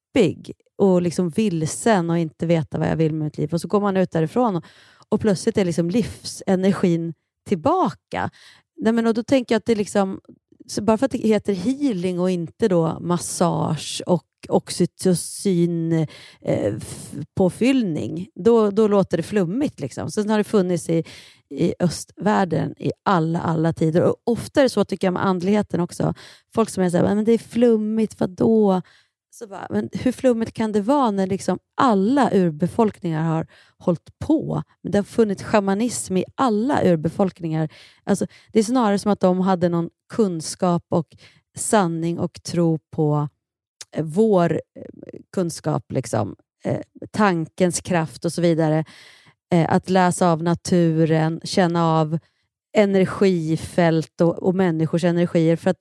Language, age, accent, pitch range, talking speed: Swedish, 30-49, native, 165-210 Hz, 150 wpm